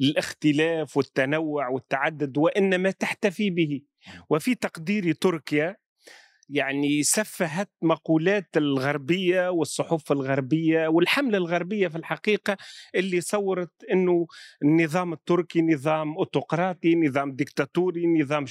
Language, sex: Arabic, male